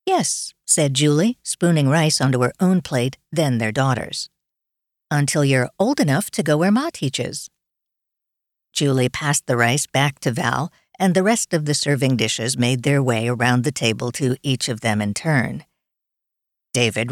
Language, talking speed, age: English, 170 wpm, 50-69